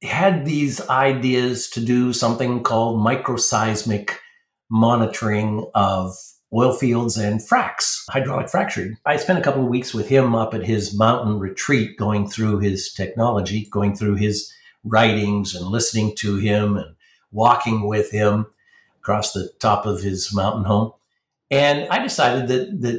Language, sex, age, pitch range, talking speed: English, male, 50-69, 105-125 Hz, 150 wpm